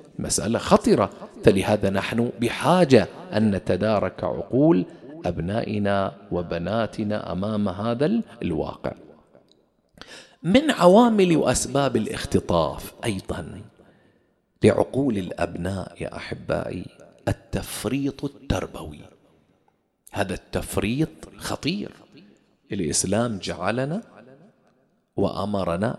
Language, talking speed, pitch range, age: English, 65 wpm, 90-145 Hz, 40-59